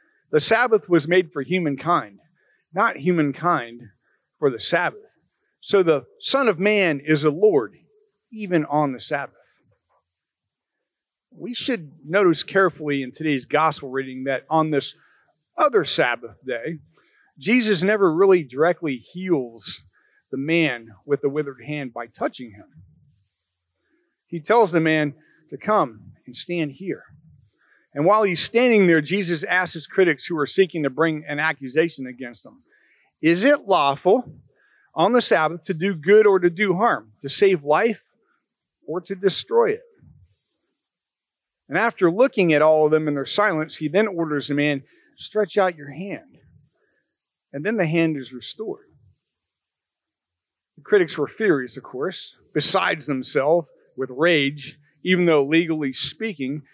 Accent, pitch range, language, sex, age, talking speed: American, 140-200 Hz, English, male, 40-59, 145 wpm